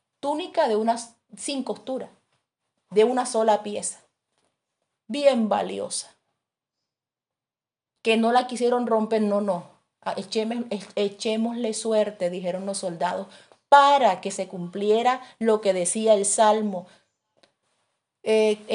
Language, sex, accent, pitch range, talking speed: English, female, Venezuelan, 205-250 Hz, 110 wpm